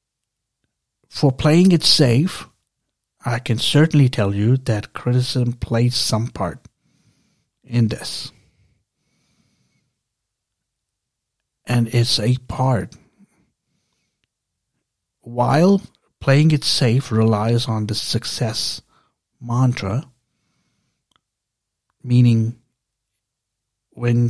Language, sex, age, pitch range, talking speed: English, male, 60-79, 110-140 Hz, 75 wpm